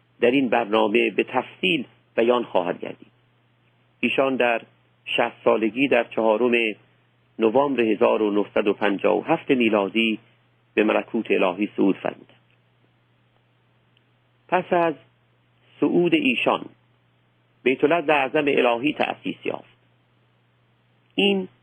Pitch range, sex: 110-155 Hz, male